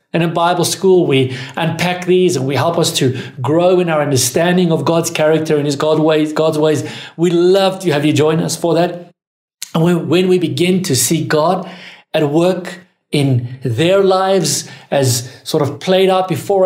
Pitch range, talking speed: 135-180 Hz, 185 wpm